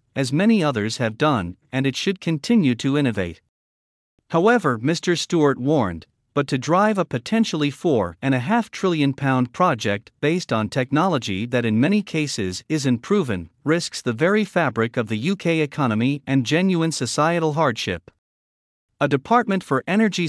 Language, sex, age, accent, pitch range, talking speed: English, male, 50-69, American, 115-170 Hz, 155 wpm